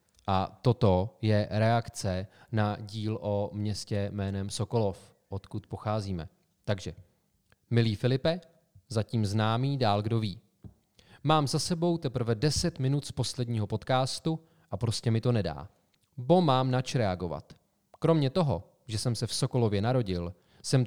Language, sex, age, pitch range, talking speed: Czech, male, 30-49, 105-135 Hz, 135 wpm